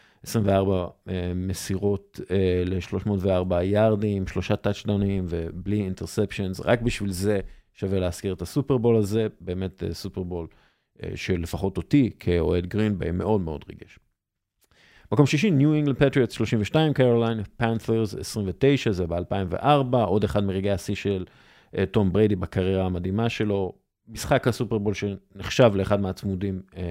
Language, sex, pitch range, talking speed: English, male, 95-115 Hz, 115 wpm